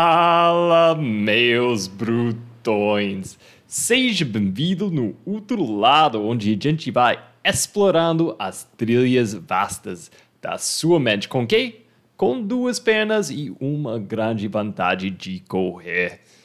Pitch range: 125-175 Hz